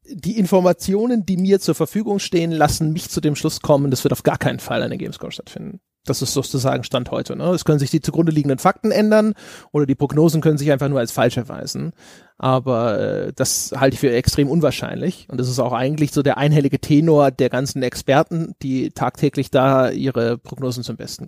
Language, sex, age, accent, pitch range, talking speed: German, male, 30-49, German, 140-175 Hz, 205 wpm